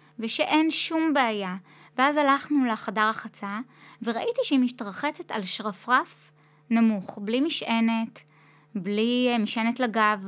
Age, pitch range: 20-39, 210-255 Hz